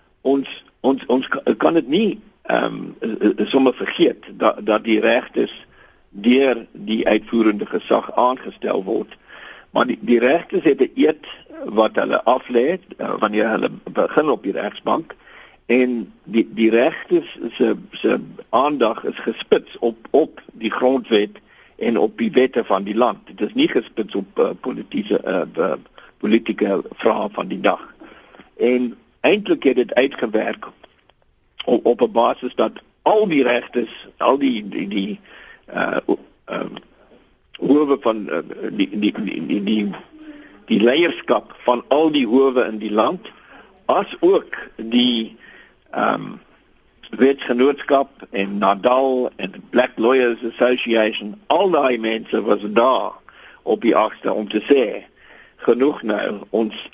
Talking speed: 135 wpm